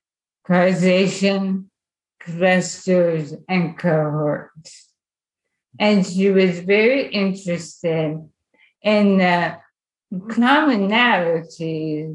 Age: 50-69